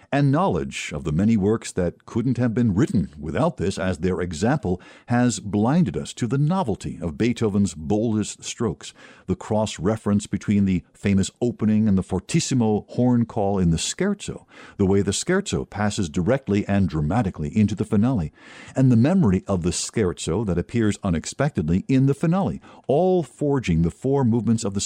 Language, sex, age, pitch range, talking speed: English, male, 50-69, 95-130 Hz, 170 wpm